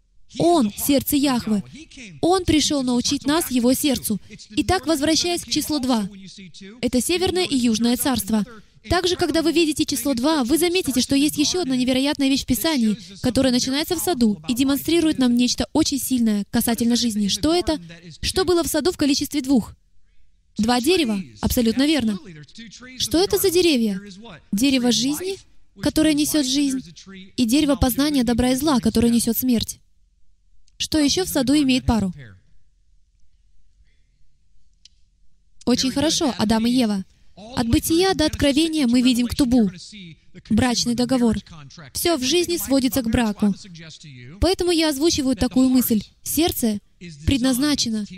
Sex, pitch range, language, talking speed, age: female, 210-300 Hz, Russian, 140 wpm, 20-39